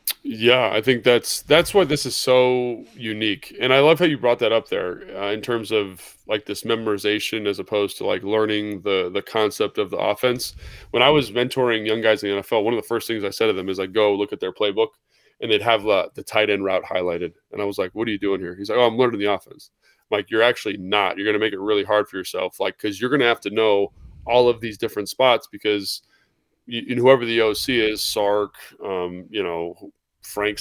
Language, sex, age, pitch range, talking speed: English, male, 20-39, 105-125 Hz, 245 wpm